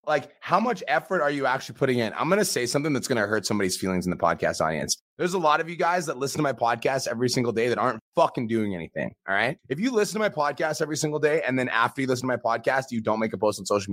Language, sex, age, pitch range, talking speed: English, male, 30-49, 125-175 Hz, 295 wpm